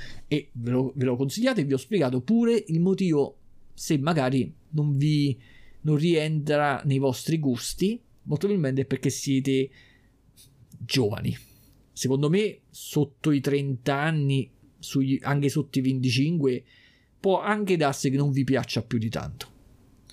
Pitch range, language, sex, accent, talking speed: 125-150 Hz, Italian, male, native, 145 wpm